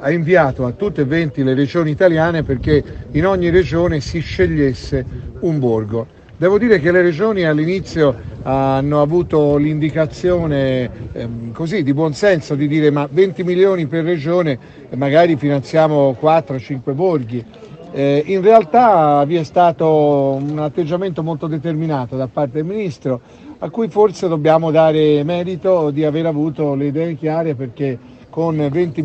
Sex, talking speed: male, 145 wpm